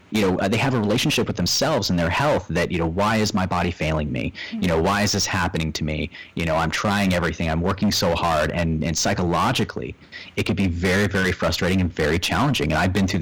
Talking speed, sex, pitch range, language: 240 wpm, male, 85-105 Hz, English